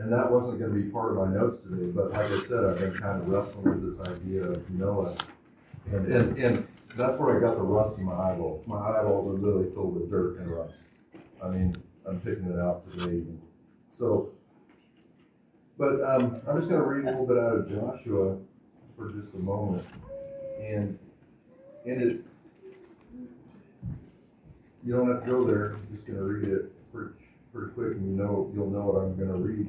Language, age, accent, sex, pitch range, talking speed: English, 40-59, American, male, 95-115 Hz, 195 wpm